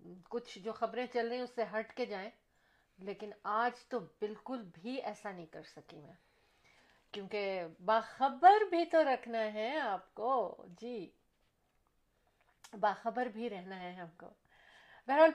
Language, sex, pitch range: Urdu, female, 195-240 Hz